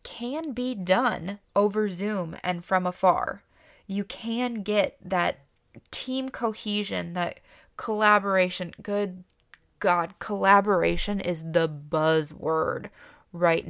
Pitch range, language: 170-200 Hz, English